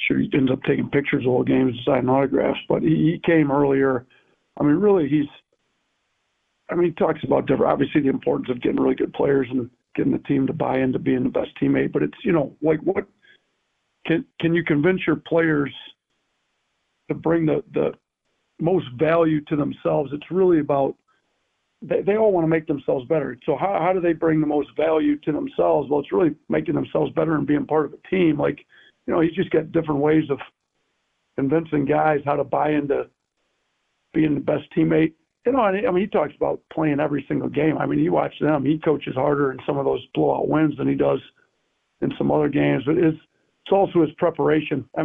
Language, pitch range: English, 140-165 Hz